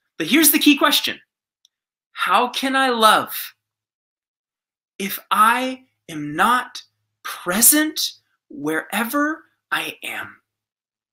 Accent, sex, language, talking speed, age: American, male, English, 90 wpm, 20-39